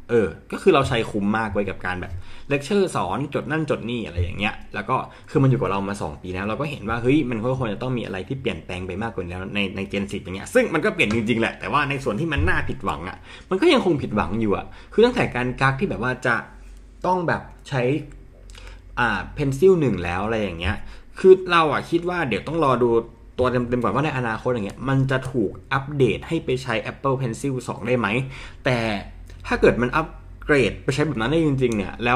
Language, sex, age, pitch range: Thai, male, 20-39, 100-135 Hz